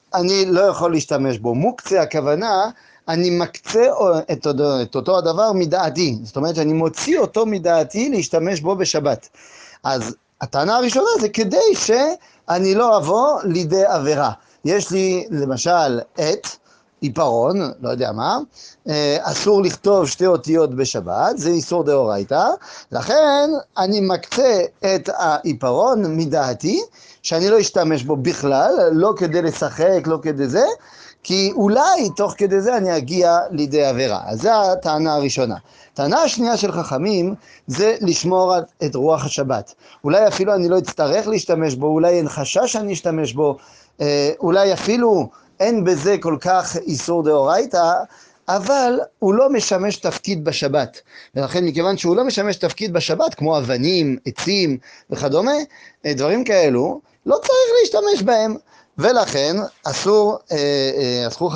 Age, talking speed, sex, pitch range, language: 30-49, 125 wpm, male, 150-205 Hz, French